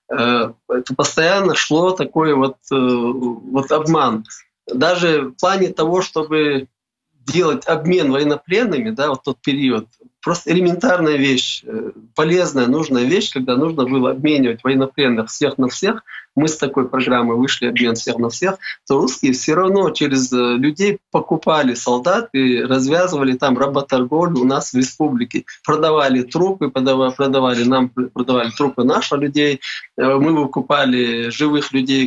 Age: 20-39